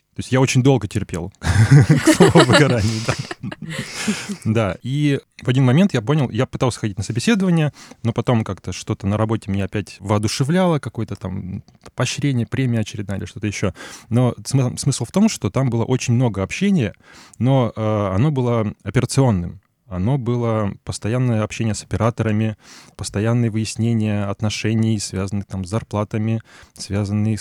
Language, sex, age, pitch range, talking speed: Russian, male, 20-39, 100-125 Hz, 150 wpm